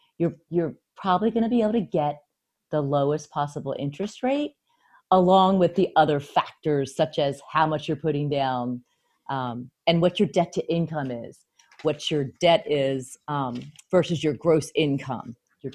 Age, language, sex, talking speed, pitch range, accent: 40-59, English, female, 170 wpm, 150-200 Hz, American